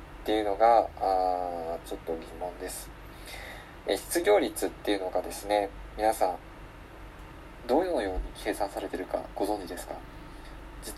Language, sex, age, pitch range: Japanese, male, 20-39, 95-115 Hz